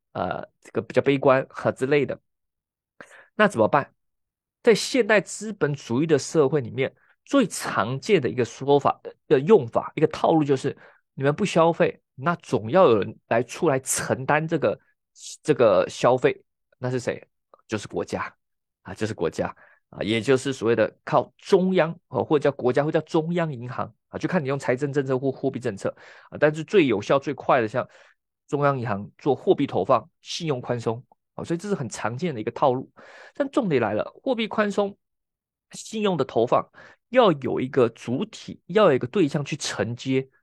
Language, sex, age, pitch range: Chinese, male, 20-39, 130-185 Hz